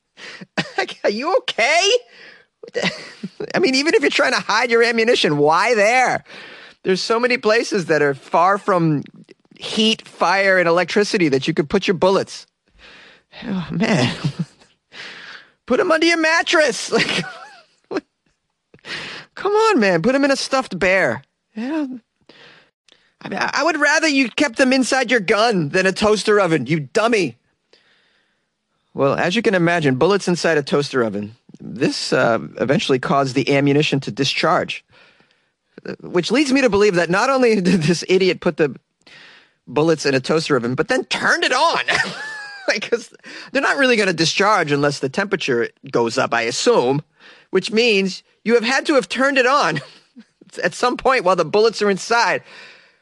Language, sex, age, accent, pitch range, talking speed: English, male, 30-49, American, 165-260 Hz, 155 wpm